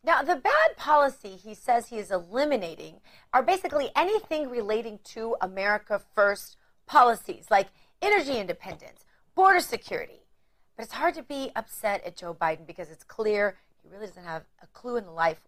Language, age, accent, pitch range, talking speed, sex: English, 40-59, American, 180-280 Hz, 165 wpm, female